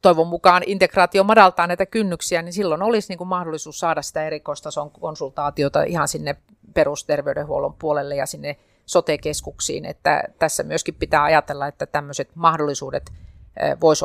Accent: native